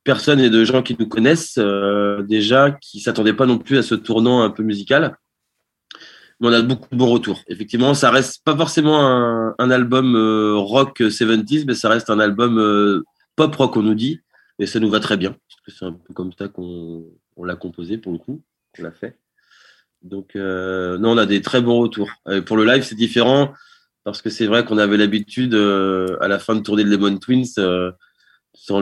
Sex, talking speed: male, 220 wpm